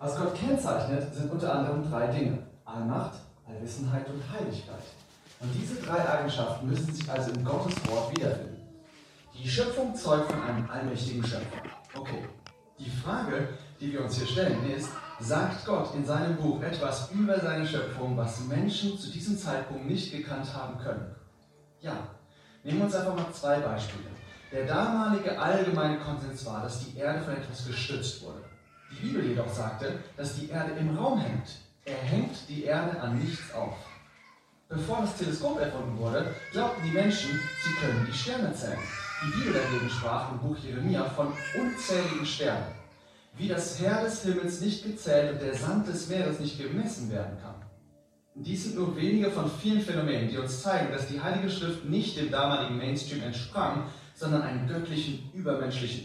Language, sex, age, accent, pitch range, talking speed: German, male, 30-49, German, 125-170 Hz, 165 wpm